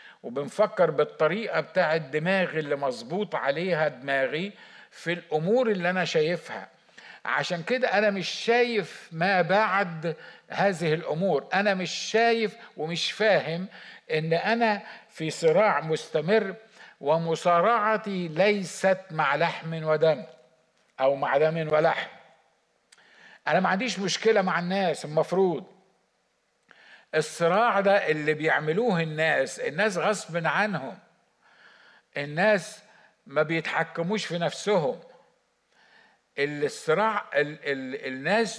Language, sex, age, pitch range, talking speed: Arabic, male, 50-69, 155-205 Hz, 105 wpm